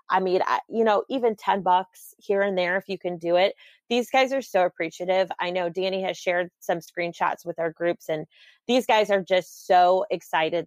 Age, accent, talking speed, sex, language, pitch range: 30-49, American, 215 wpm, female, English, 170-200 Hz